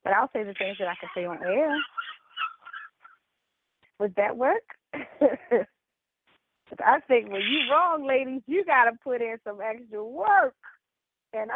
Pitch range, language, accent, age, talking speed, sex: 220-290 Hz, English, American, 30-49, 155 wpm, female